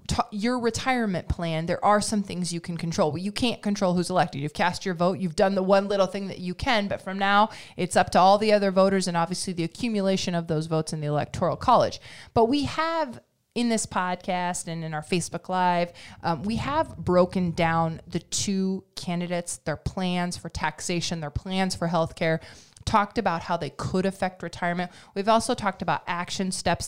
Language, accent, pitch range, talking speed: English, American, 170-200 Hz, 205 wpm